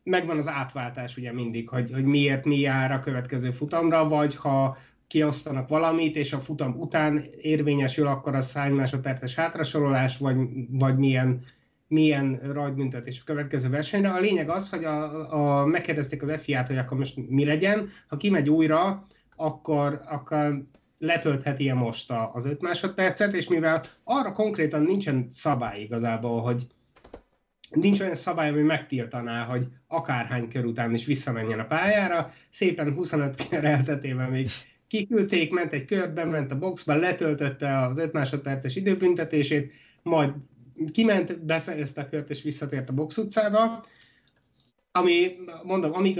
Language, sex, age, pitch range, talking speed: Hungarian, male, 30-49, 135-165 Hz, 145 wpm